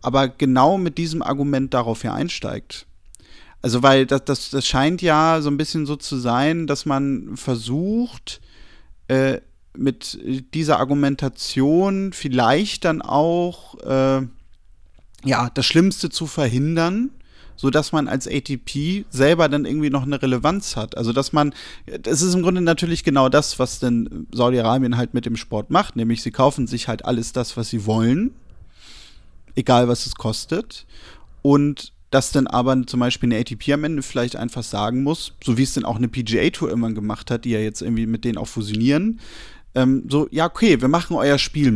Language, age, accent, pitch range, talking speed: German, 30-49, German, 120-150 Hz, 170 wpm